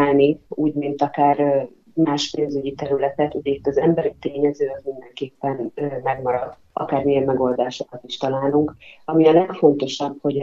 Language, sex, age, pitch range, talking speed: Hungarian, female, 30-49, 140-160 Hz, 125 wpm